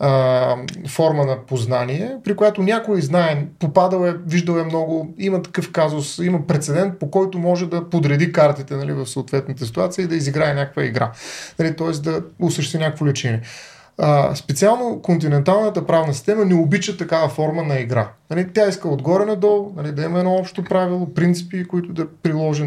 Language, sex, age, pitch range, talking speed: Bulgarian, male, 30-49, 145-190 Hz, 165 wpm